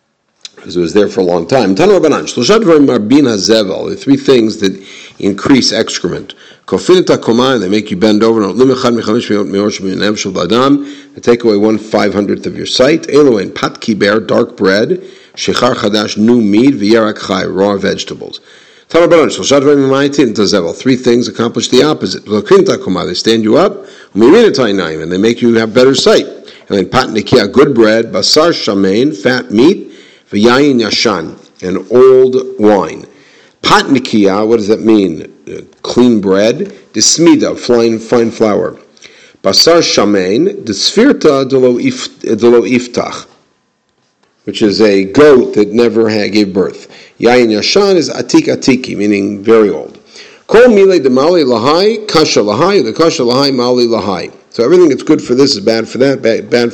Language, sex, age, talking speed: English, male, 50-69, 120 wpm